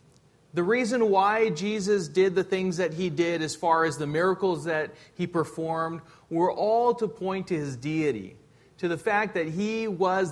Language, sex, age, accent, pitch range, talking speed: English, male, 40-59, American, 155-195 Hz, 180 wpm